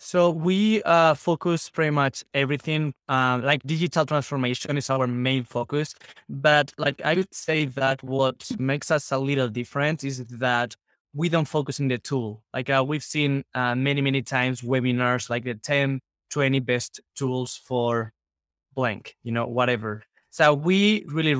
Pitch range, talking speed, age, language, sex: 130-150 Hz, 165 wpm, 20-39, English, male